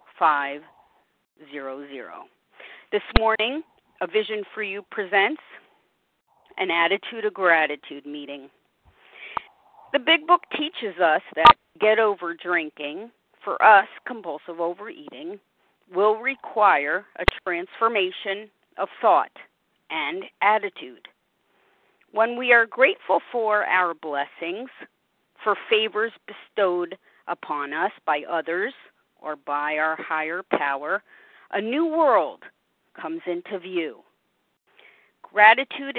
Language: English